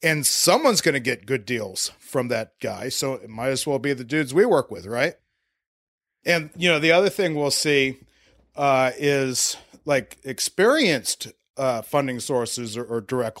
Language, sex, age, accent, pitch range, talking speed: English, male, 40-59, American, 125-150 Hz, 180 wpm